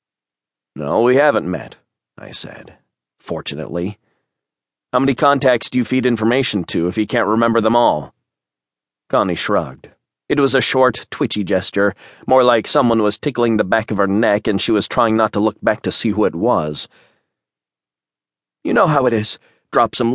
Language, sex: English, male